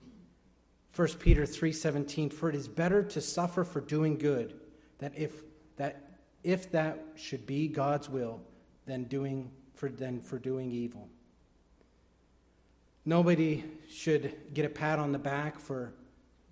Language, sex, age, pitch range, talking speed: English, male, 40-59, 125-160 Hz, 140 wpm